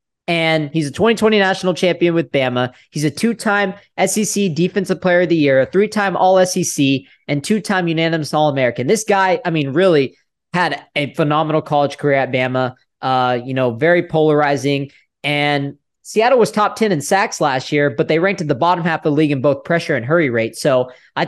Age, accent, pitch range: 20-39, American, 140-170 Hz